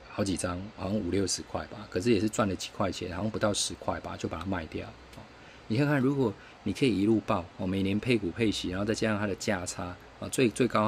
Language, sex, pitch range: Chinese, male, 90-110 Hz